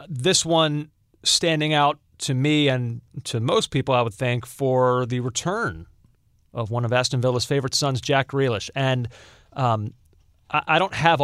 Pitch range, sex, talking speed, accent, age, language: 120-160 Hz, male, 160 wpm, American, 40-59, English